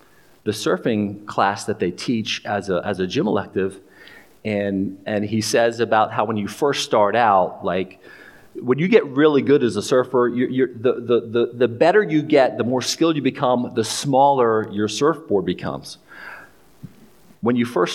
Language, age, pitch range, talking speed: English, 40-59, 105-125 Hz, 180 wpm